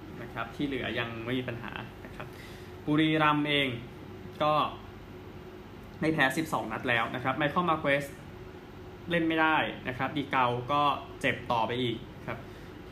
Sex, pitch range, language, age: male, 115-145 Hz, Thai, 20-39